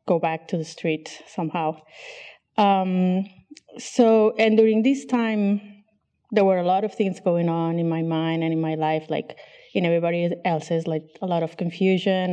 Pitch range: 165-200 Hz